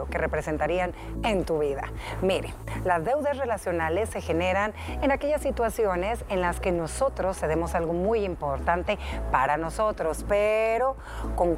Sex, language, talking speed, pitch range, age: female, Spanish, 135 wpm, 170-240 Hz, 40-59